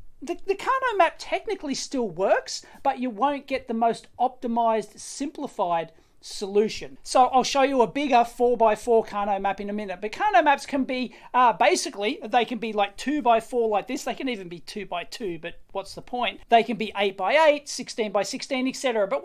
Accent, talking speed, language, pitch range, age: Australian, 180 wpm, English, 200-275 Hz, 40-59